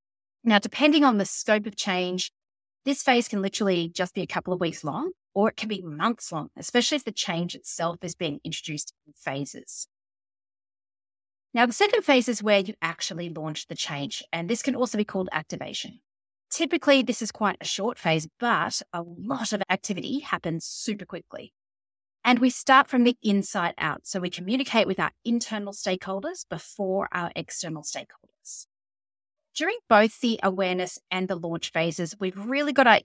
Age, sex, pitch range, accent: 30-49, female, 165-230 Hz, Australian